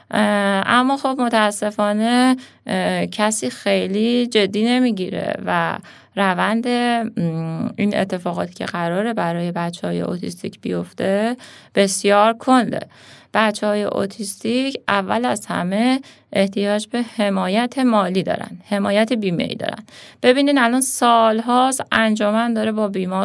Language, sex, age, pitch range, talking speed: Persian, female, 30-49, 195-235 Hz, 110 wpm